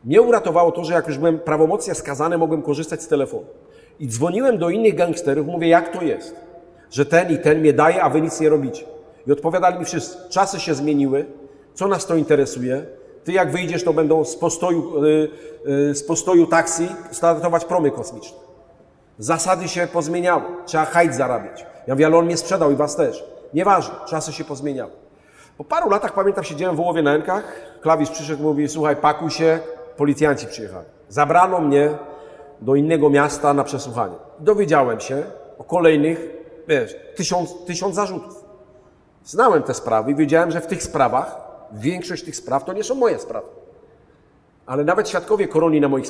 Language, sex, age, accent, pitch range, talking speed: Polish, male, 40-59, native, 150-180 Hz, 170 wpm